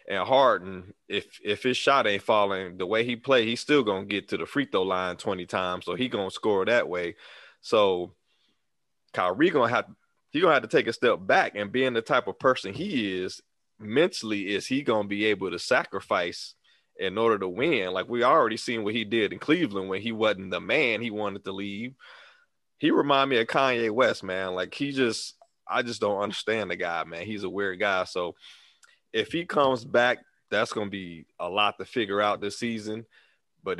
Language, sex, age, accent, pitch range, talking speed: English, male, 30-49, American, 95-115 Hz, 215 wpm